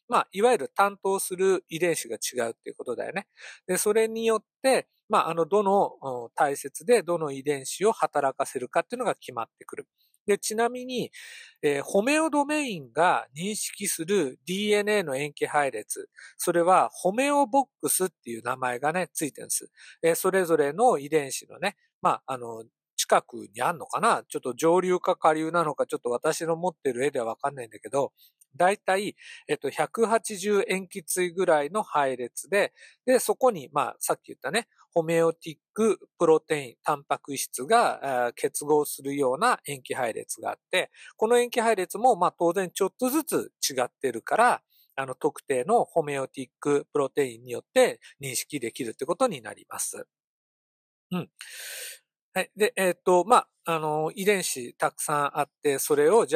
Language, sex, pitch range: Japanese, male, 150-235 Hz